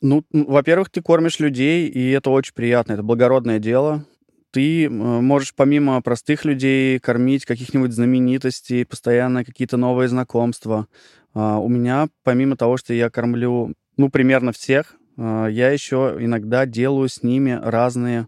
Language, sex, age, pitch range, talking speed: Russian, male, 20-39, 120-140 Hz, 135 wpm